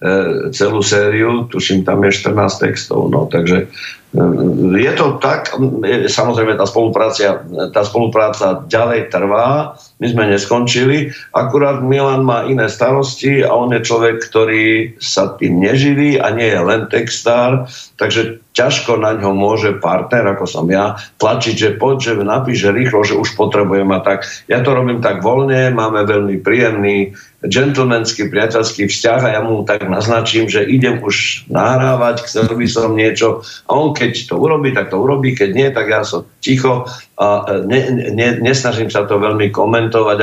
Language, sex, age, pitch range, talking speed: Slovak, male, 50-69, 100-125 Hz, 155 wpm